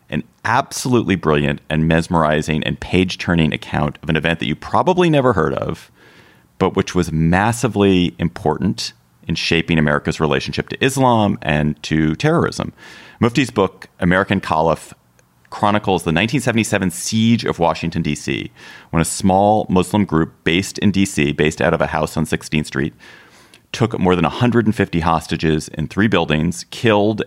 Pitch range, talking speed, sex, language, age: 80-100 Hz, 145 wpm, male, English, 30-49